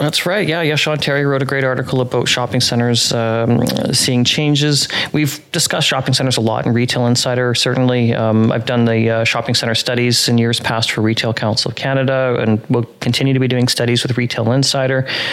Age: 30-49